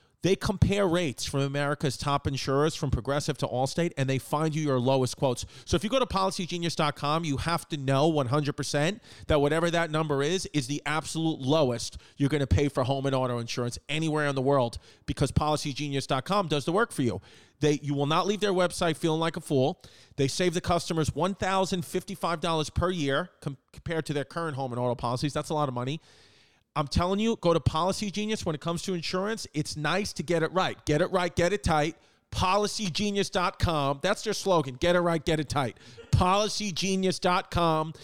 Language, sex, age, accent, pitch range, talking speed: English, male, 40-59, American, 140-180 Hz, 195 wpm